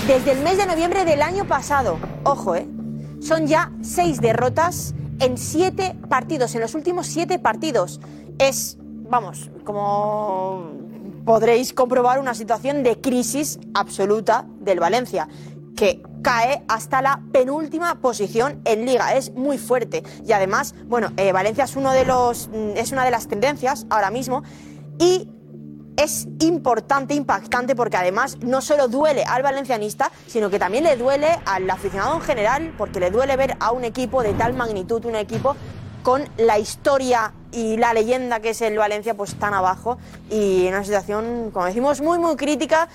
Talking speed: 160 wpm